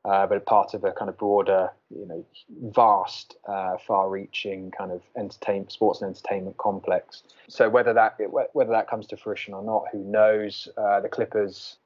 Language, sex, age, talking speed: English, male, 20-39, 170 wpm